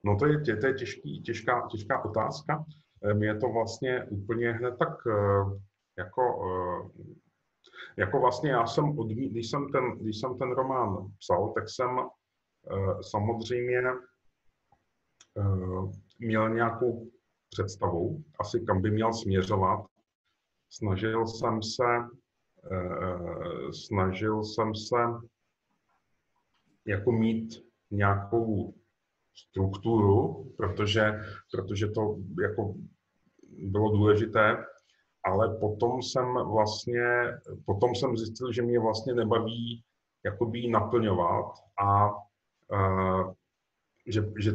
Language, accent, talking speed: Italian, Czech, 95 wpm